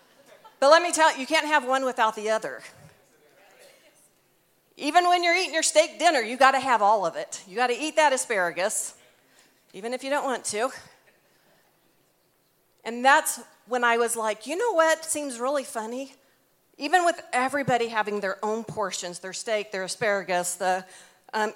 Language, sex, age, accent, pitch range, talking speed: English, female, 40-59, American, 185-265 Hz, 175 wpm